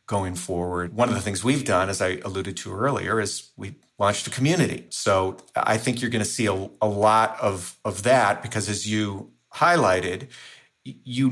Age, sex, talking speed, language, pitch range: 40-59, male, 190 wpm, English, 100-125 Hz